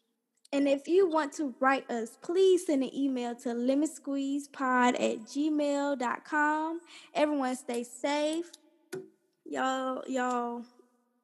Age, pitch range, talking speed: 10-29, 245-290 Hz, 110 wpm